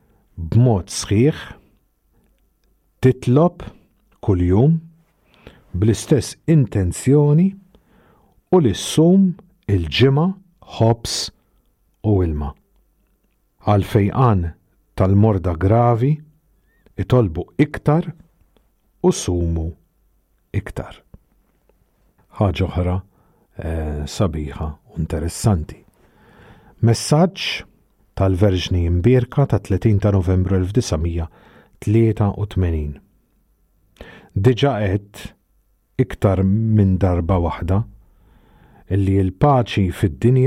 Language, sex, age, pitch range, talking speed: English, male, 50-69, 90-125 Hz, 55 wpm